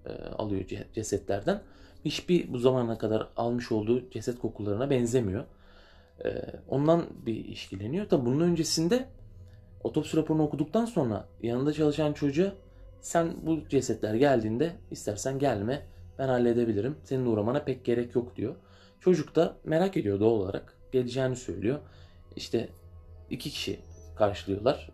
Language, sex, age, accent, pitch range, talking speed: Turkish, male, 30-49, native, 100-140 Hz, 120 wpm